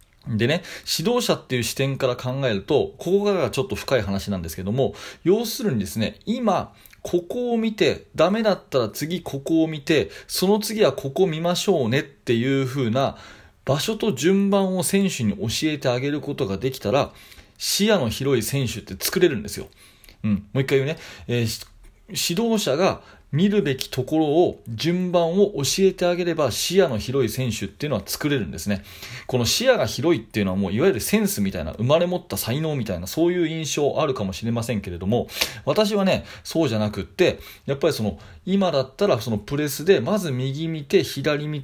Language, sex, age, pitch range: Japanese, male, 40-59, 110-180 Hz